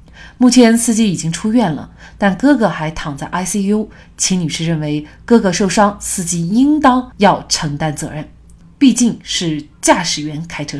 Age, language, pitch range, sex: 30-49, Chinese, 160-230 Hz, female